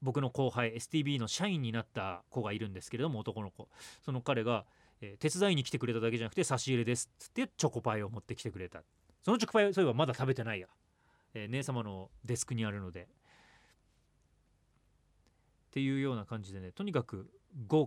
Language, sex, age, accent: Japanese, male, 30-49, native